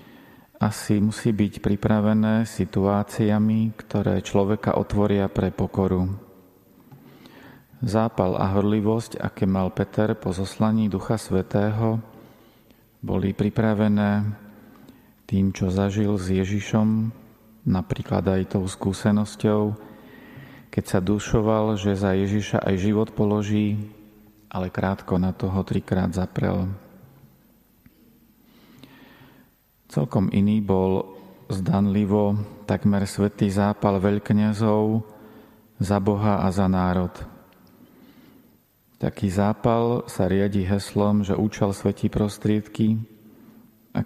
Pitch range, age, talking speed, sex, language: 95-110 Hz, 40-59, 95 wpm, male, Slovak